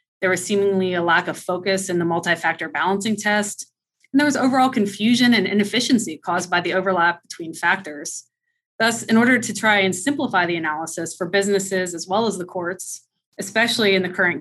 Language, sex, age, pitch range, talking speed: English, female, 20-39, 175-210 Hz, 185 wpm